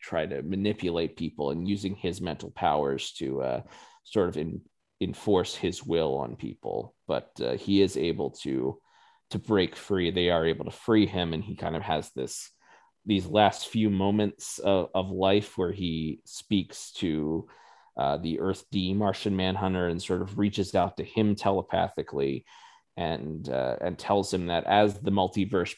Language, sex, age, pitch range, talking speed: English, male, 30-49, 80-100 Hz, 170 wpm